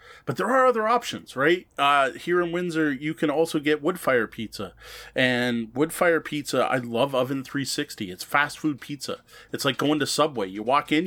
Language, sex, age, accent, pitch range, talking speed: English, male, 30-49, American, 120-155 Hz, 200 wpm